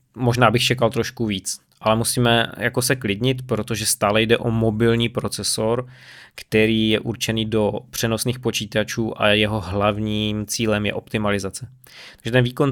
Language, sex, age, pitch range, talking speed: Czech, male, 20-39, 110-125 Hz, 145 wpm